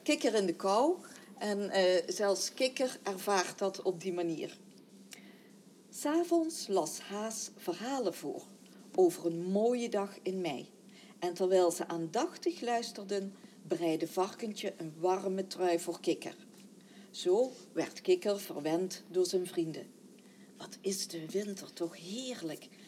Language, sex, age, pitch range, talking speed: Dutch, female, 50-69, 175-215 Hz, 130 wpm